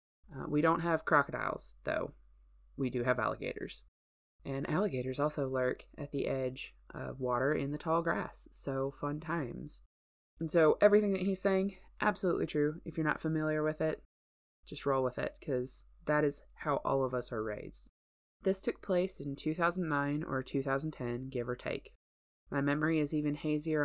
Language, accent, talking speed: English, American, 170 wpm